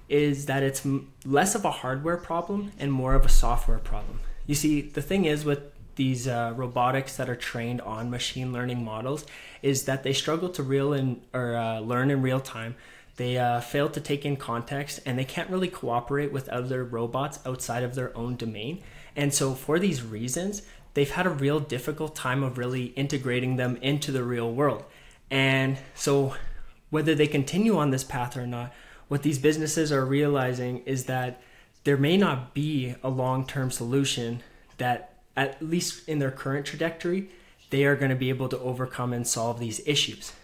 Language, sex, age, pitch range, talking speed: English, male, 20-39, 125-145 Hz, 185 wpm